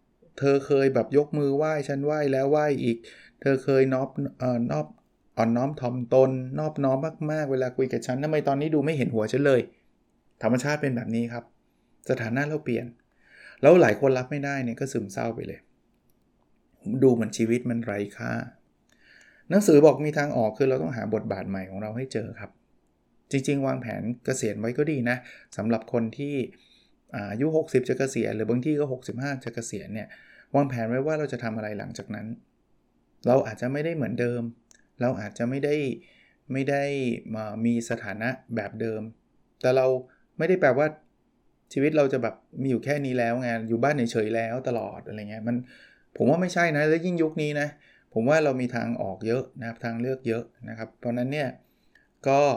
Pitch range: 115-140 Hz